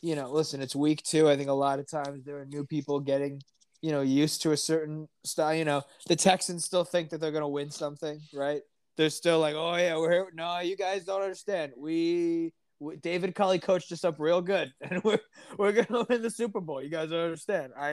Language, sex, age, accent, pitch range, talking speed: English, male, 20-39, American, 145-185 Hz, 240 wpm